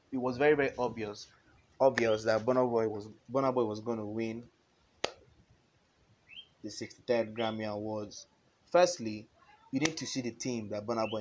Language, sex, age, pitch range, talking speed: English, male, 20-39, 110-130 Hz, 140 wpm